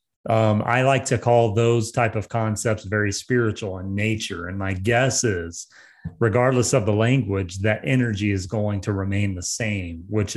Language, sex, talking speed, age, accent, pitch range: English, male, 175 wpm, 30-49, American, 110-130 Hz